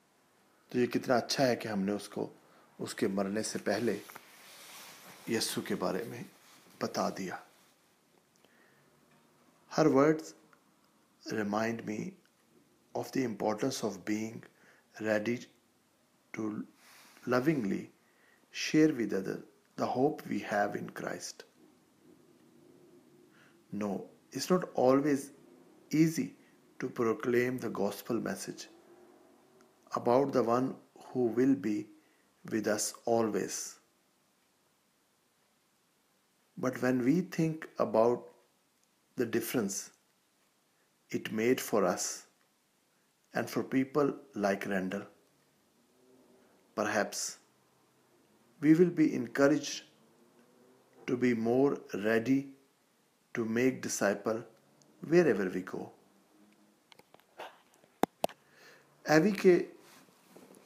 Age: 50-69